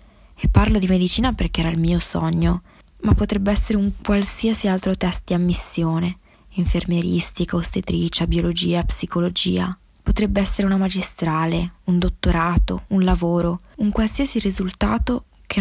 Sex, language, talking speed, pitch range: female, Italian, 130 wpm, 165-195 Hz